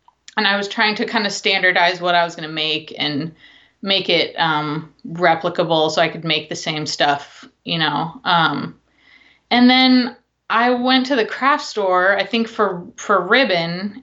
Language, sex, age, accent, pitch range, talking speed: English, female, 20-39, American, 175-225 Hz, 175 wpm